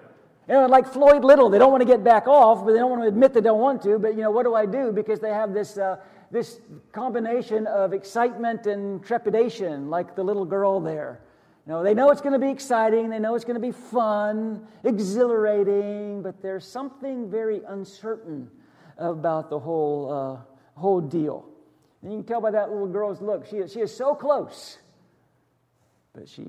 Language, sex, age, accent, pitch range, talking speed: English, male, 50-69, American, 170-235 Hz, 205 wpm